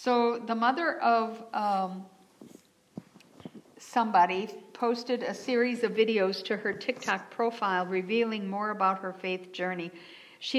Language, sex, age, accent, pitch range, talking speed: English, female, 60-79, American, 195-245 Hz, 125 wpm